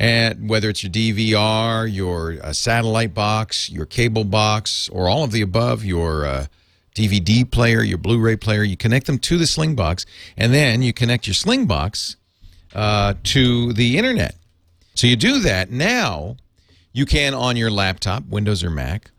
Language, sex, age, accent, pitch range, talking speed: English, male, 50-69, American, 85-115 Hz, 170 wpm